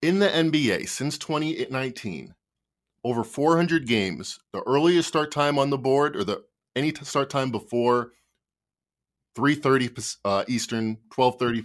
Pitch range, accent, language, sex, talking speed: 115-150 Hz, American, English, male, 130 wpm